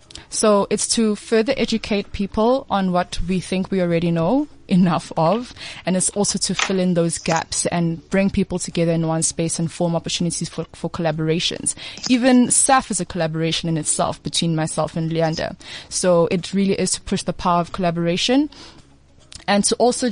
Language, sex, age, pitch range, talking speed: English, female, 20-39, 165-195 Hz, 180 wpm